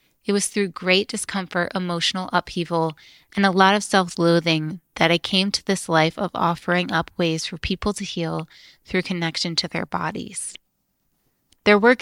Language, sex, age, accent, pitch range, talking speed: English, female, 20-39, American, 165-195 Hz, 165 wpm